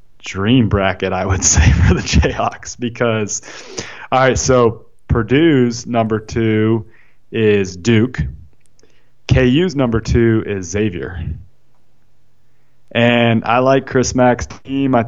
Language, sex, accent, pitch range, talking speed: English, male, American, 100-115 Hz, 115 wpm